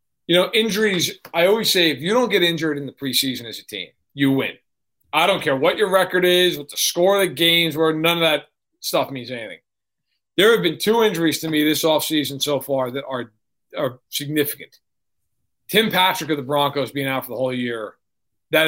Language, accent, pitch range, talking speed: English, American, 140-175 Hz, 210 wpm